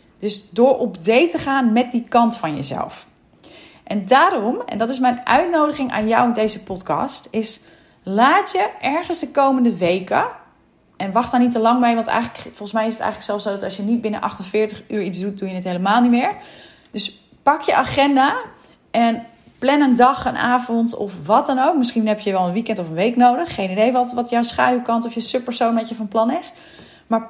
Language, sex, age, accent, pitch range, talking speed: Dutch, female, 30-49, Dutch, 220-275 Hz, 220 wpm